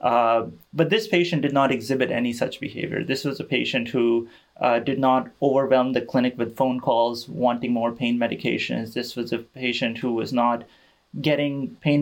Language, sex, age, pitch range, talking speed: English, male, 30-49, 120-145 Hz, 185 wpm